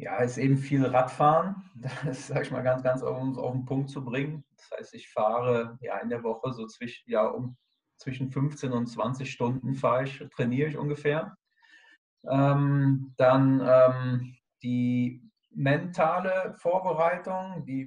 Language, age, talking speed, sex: German, 40-59, 155 wpm, male